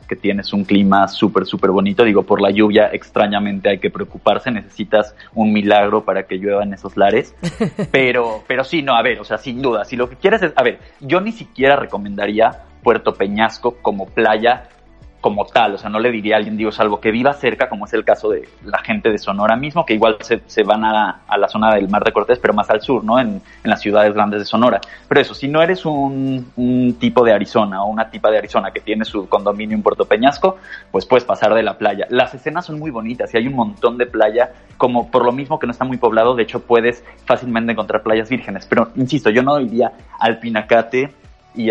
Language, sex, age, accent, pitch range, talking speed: Spanish, male, 30-49, Mexican, 105-135 Hz, 230 wpm